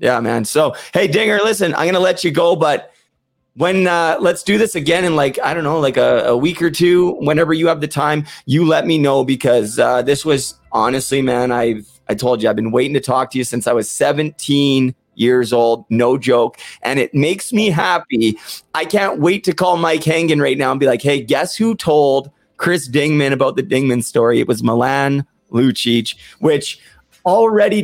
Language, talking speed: English, 210 wpm